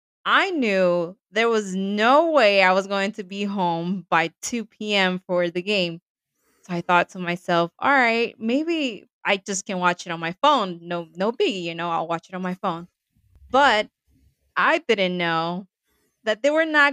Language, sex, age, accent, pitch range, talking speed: English, female, 20-39, American, 185-250 Hz, 190 wpm